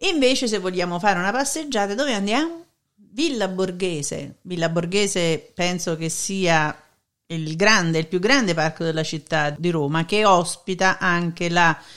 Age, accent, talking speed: 50-69, native, 145 wpm